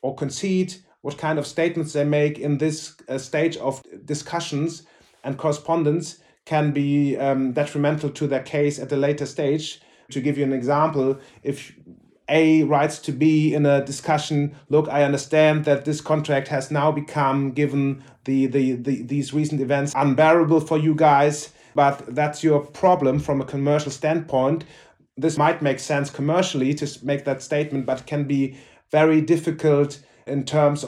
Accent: German